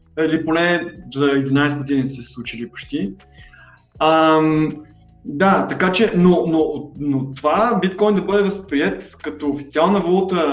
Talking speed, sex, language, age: 135 wpm, male, Bulgarian, 20-39